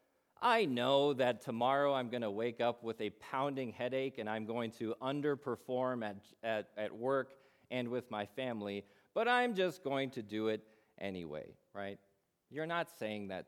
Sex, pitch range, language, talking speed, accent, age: male, 105-140 Hz, English, 170 wpm, American, 40-59